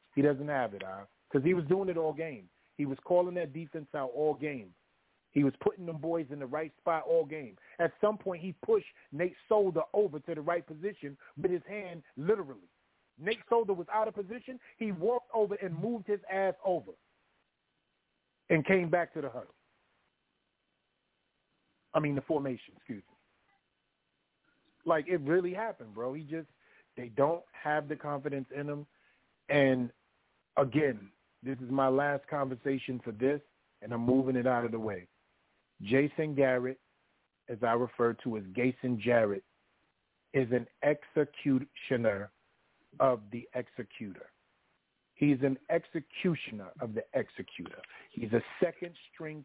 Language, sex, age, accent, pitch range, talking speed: English, male, 40-59, American, 130-170 Hz, 155 wpm